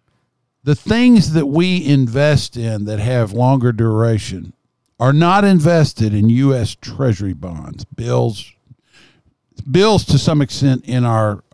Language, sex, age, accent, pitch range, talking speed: English, male, 50-69, American, 110-145 Hz, 125 wpm